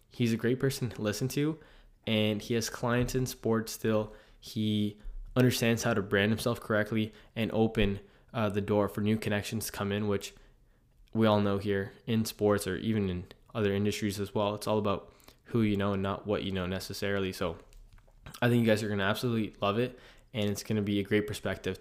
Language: English